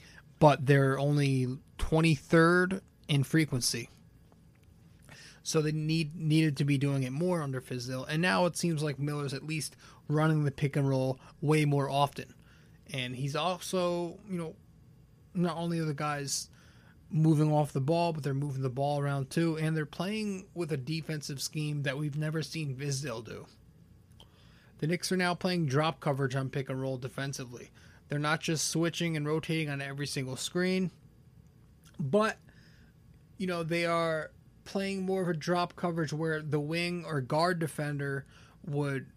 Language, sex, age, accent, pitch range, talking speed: English, male, 20-39, American, 140-170 Hz, 165 wpm